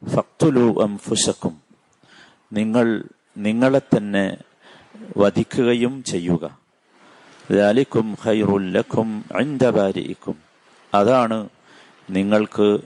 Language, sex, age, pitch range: Malayalam, male, 50-69, 95-115 Hz